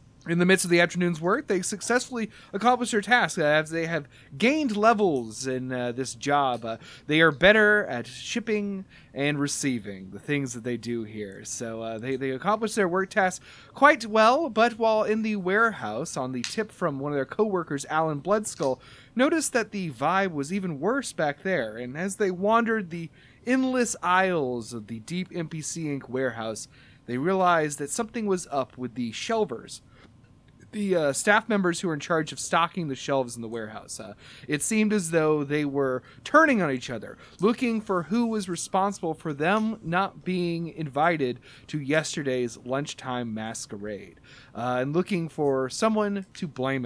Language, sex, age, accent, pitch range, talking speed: English, male, 30-49, American, 130-200 Hz, 175 wpm